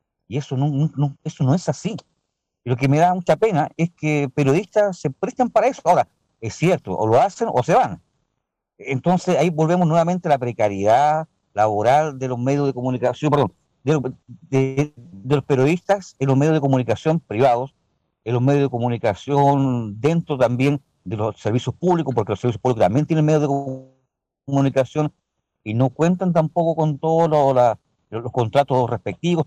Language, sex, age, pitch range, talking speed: Spanish, male, 50-69, 125-175 Hz, 175 wpm